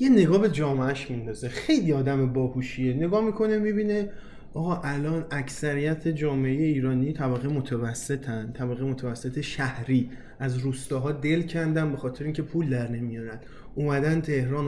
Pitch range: 135-180 Hz